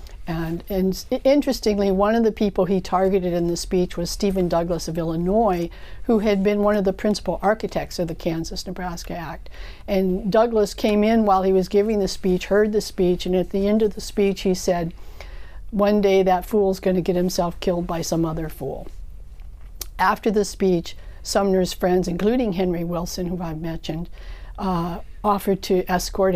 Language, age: English, 60-79